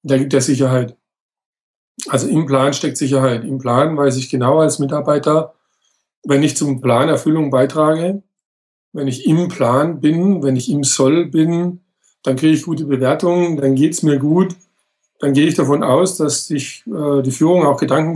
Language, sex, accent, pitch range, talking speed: German, male, German, 140-160 Hz, 175 wpm